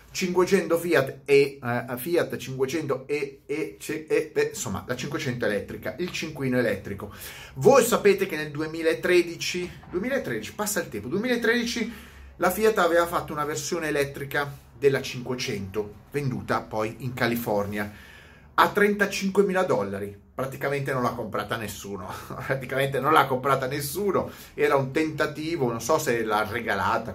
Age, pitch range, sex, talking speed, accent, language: 30-49, 110-165 Hz, male, 135 wpm, native, Italian